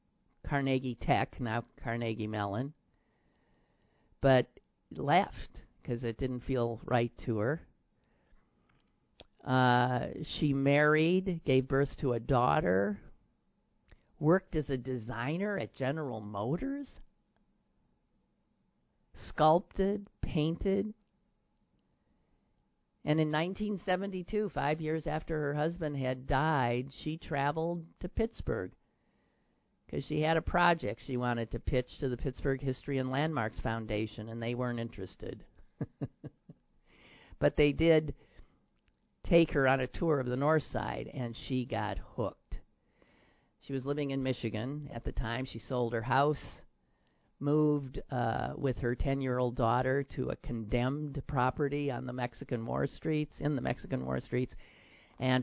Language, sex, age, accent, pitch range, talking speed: English, male, 50-69, American, 120-150 Hz, 125 wpm